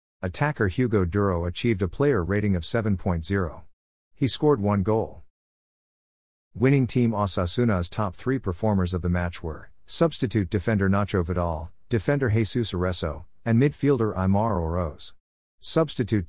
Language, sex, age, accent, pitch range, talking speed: English, male, 50-69, American, 90-115 Hz, 130 wpm